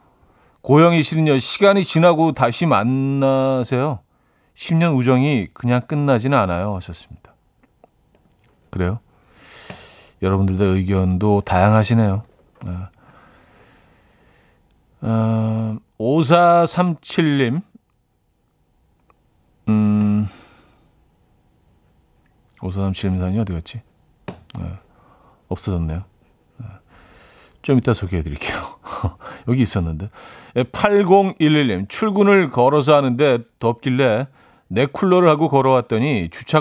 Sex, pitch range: male, 100-145 Hz